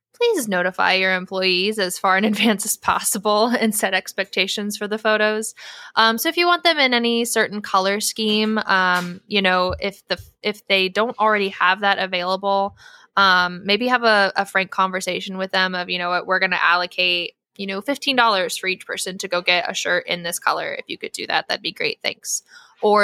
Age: 10-29